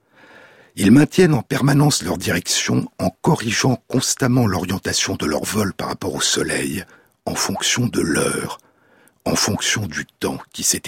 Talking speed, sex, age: 150 wpm, male, 60-79